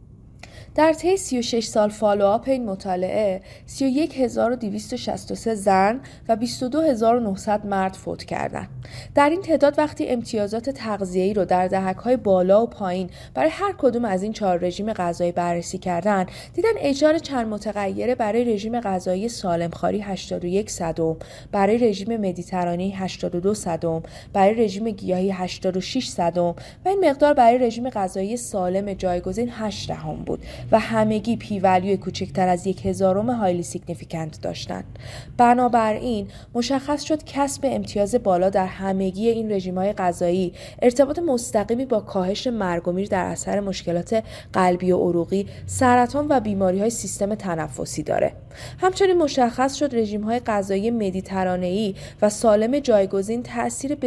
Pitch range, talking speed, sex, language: 185-235 Hz, 135 wpm, female, Persian